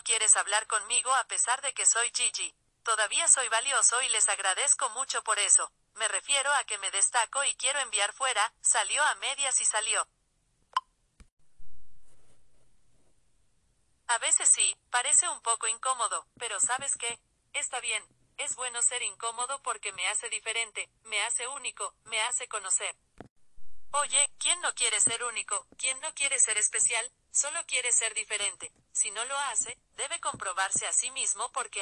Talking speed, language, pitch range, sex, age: 160 wpm, English, 215-265 Hz, female, 40-59